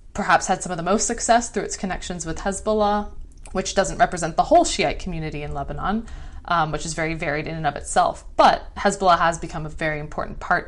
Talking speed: 215 wpm